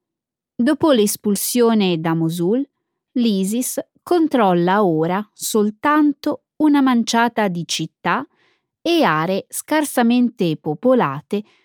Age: 20-39